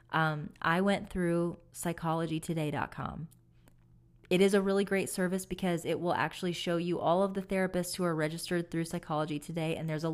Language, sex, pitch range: English, female, 155-190 Hz